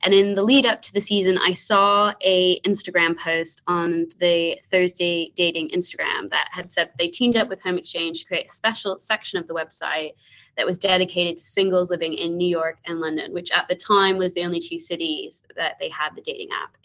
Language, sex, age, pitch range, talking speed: English, female, 20-39, 170-205 Hz, 215 wpm